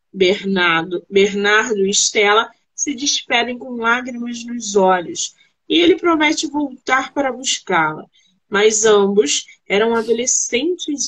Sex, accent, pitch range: female, Brazilian, 210-310 Hz